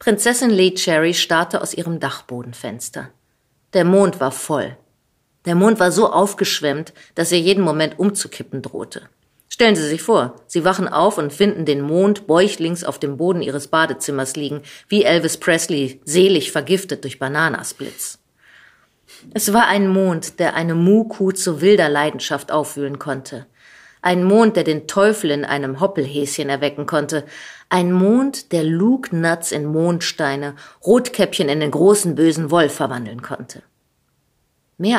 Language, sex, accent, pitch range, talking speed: German, female, German, 145-190 Hz, 145 wpm